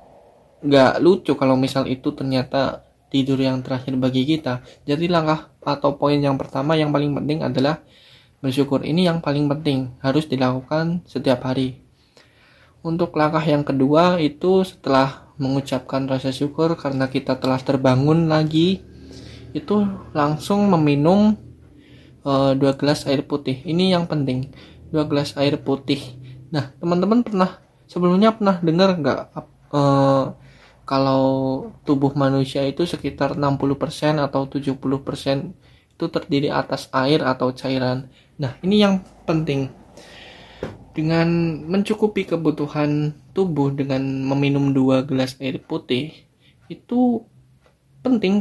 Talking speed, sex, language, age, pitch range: 120 wpm, male, Indonesian, 20-39, 135-160 Hz